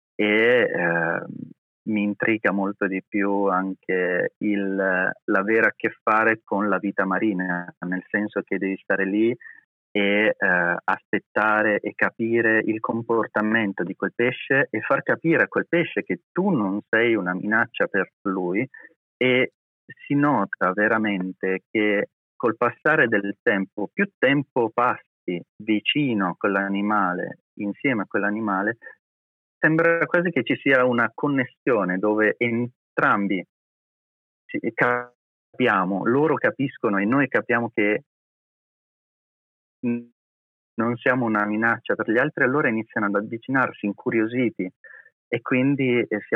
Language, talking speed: Italian, 125 wpm